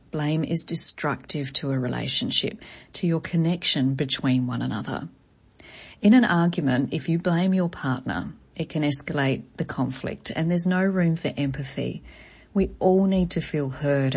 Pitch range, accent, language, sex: 135-185 Hz, Australian, English, female